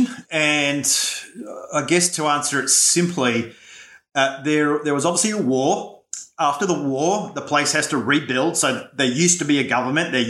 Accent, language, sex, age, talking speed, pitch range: Australian, English, male, 30-49, 175 wpm, 130-165 Hz